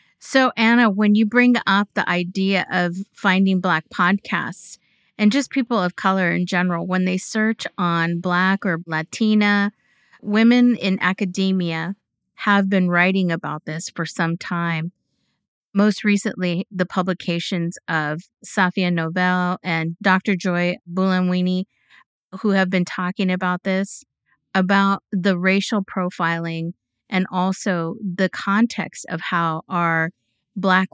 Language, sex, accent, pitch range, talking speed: English, female, American, 170-200 Hz, 130 wpm